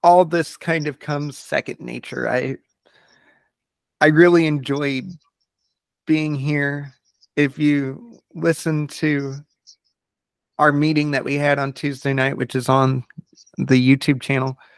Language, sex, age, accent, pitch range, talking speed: English, male, 30-49, American, 140-160 Hz, 125 wpm